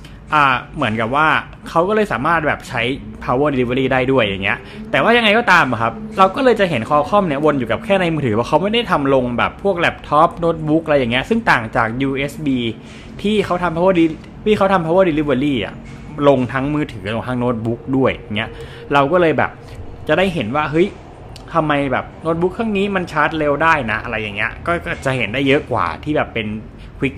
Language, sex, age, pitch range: Thai, male, 20-39, 125-175 Hz